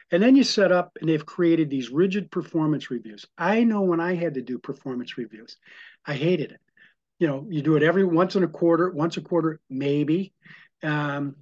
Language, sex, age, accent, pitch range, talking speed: English, male, 50-69, American, 145-180 Hz, 205 wpm